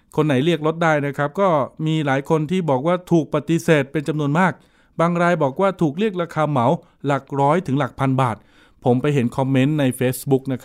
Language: Thai